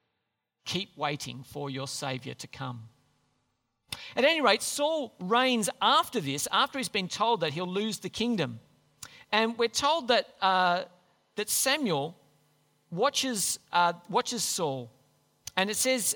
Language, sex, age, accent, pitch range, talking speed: English, male, 40-59, Australian, 150-225 Hz, 135 wpm